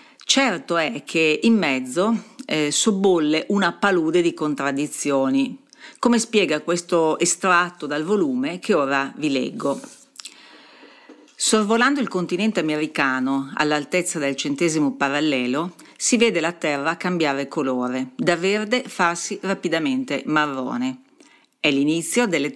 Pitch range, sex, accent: 145-230 Hz, female, native